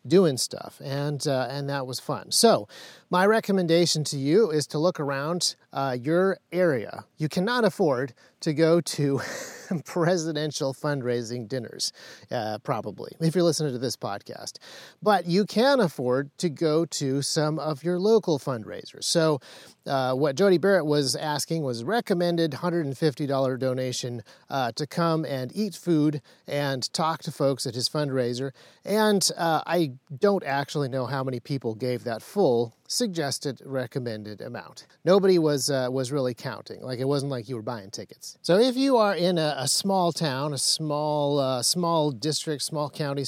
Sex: male